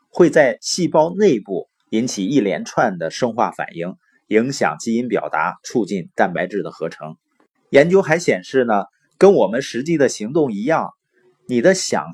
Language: Chinese